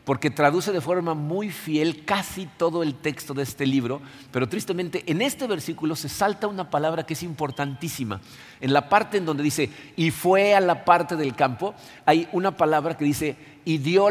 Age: 50-69